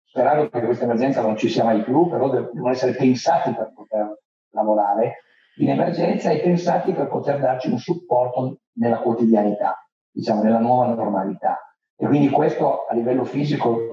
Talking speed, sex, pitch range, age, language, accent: 160 wpm, male, 110-140 Hz, 40-59, Italian, native